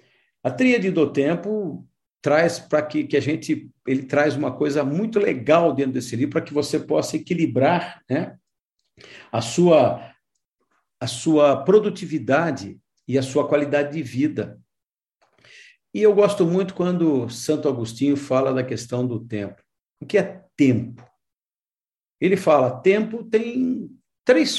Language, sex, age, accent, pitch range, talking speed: Portuguese, male, 50-69, Brazilian, 135-195 Hz, 135 wpm